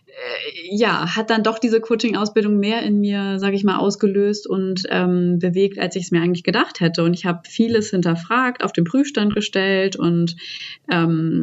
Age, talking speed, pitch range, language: 20-39, 180 wpm, 170-200 Hz, German